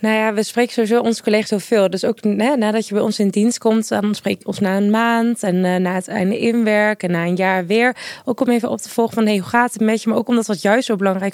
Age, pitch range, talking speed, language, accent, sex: 20-39, 195-225 Hz, 300 wpm, Dutch, Dutch, female